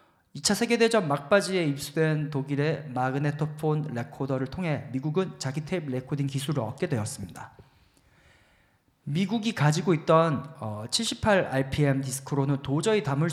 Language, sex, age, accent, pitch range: Korean, male, 40-59, native, 135-180 Hz